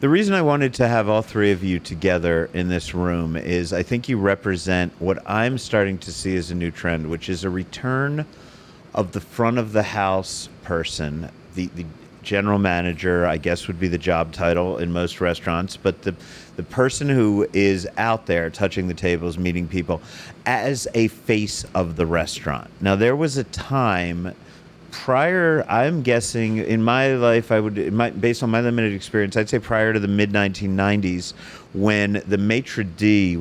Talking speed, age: 180 wpm, 40-59